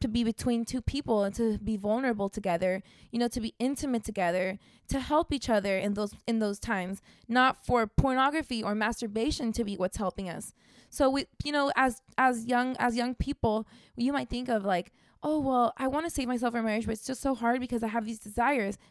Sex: female